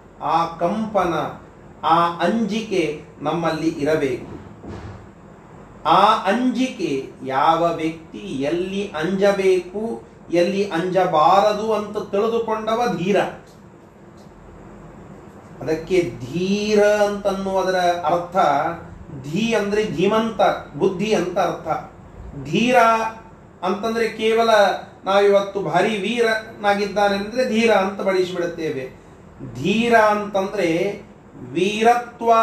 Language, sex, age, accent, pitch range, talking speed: Kannada, male, 30-49, native, 175-220 Hz, 75 wpm